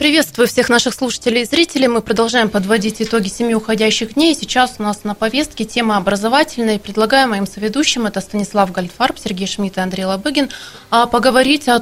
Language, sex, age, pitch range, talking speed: Russian, female, 20-39, 205-250 Hz, 170 wpm